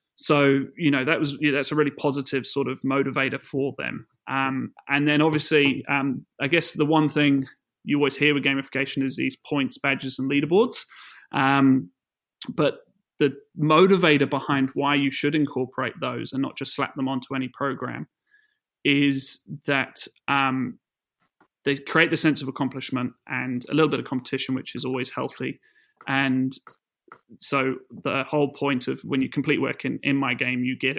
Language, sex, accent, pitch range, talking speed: English, male, British, 130-145 Hz, 170 wpm